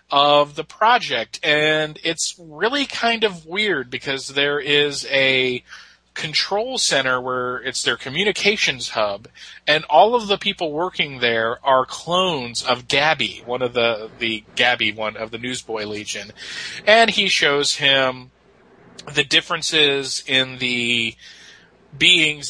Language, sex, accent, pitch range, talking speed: English, male, American, 125-165 Hz, 135 wpm